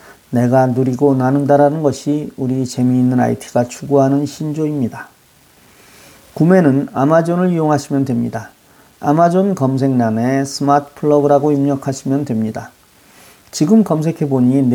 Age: 40-59